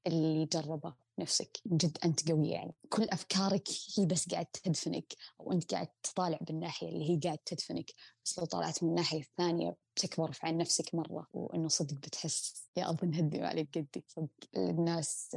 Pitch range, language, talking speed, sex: 160-185 Hz, Arabic, 160 wpm, female